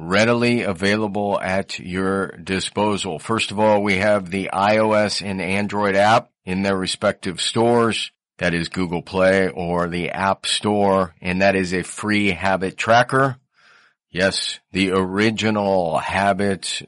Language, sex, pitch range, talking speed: English, male, 95-115 Hz, 135 wpm